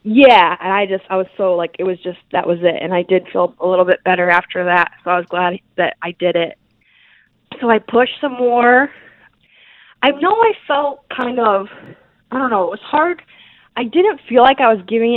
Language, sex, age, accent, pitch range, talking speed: English, female, 20-39, American, 180-235 Hz, 220 wpm